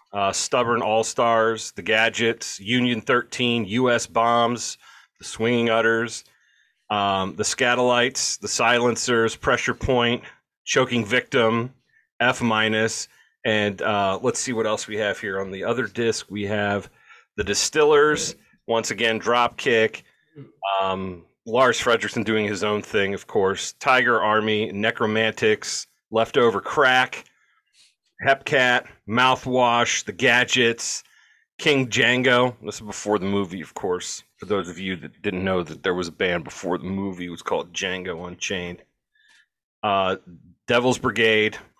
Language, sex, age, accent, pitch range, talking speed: English, male, 30-49, American, 100-120 Hz, 130 wpm